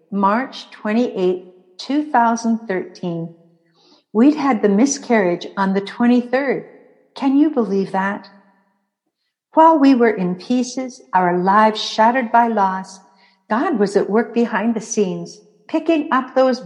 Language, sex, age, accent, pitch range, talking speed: English, female, 60-79, American, 180-230 Hz, 125 wpm